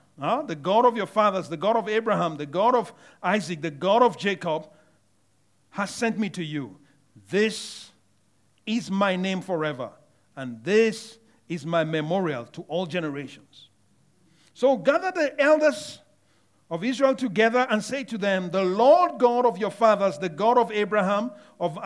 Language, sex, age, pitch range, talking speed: English, male, 50-69, 155-230 Hz, 160 wpm